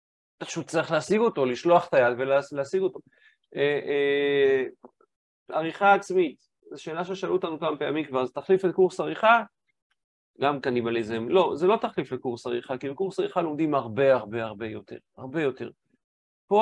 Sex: male